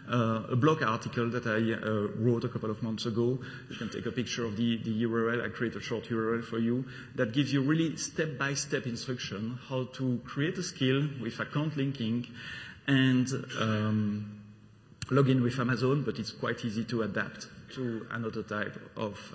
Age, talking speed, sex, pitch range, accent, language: 40-59, 180 wpm, male, 115-140 Hz, French, English